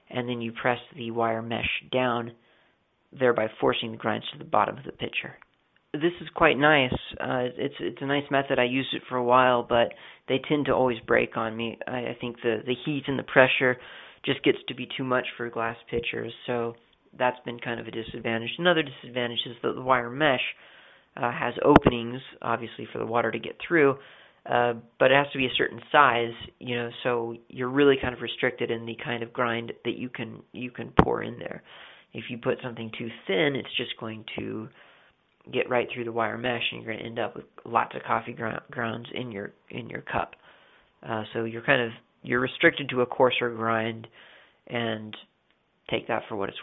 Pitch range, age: 115-130 Hz, 40-59